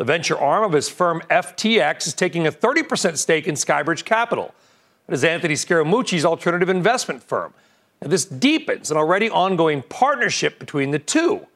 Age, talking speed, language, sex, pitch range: 40-59, 160 wpm, English, male, 165-210 Hz